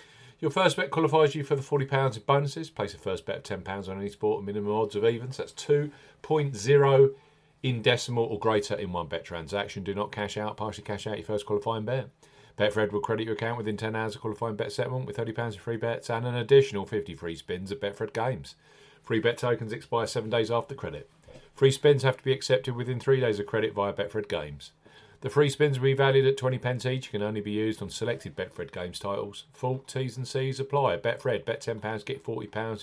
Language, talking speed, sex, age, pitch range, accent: English, 225 wpm, male, 40-59, 105-135 Hz, British